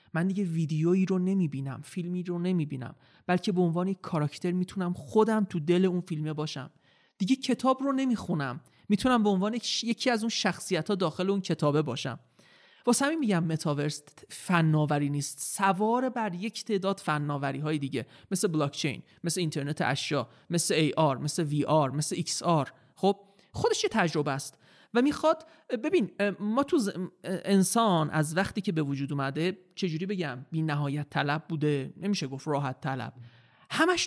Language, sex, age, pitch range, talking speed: Persian, male, 30-49, 150-210 Hz, 155 wpm